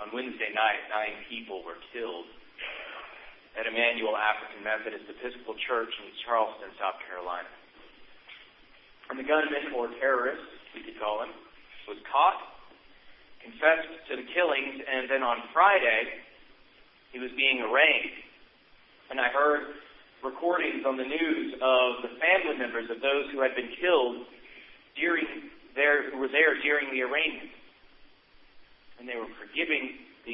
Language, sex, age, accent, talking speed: English, male, 40-59, American, 140 wpm